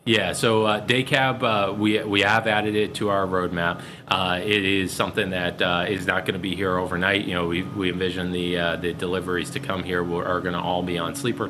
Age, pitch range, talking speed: 30-49, 90-105 Hz, 240 wpm